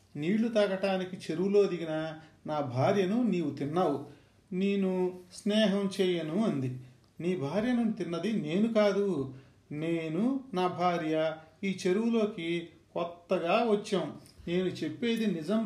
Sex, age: male, 40-59